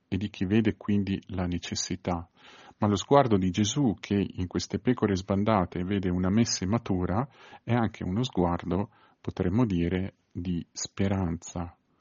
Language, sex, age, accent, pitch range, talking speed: Italian, male, 50-69, native, 90-110 Hz, 140 wpm